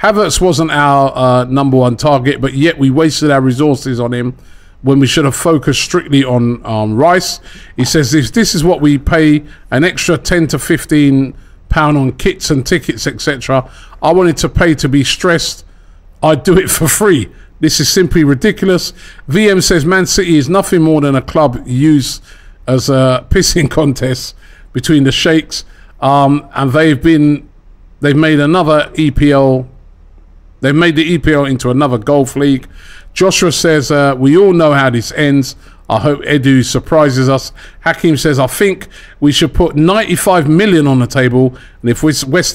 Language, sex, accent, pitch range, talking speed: English, male, British, 130-160 Hz, 170 wpm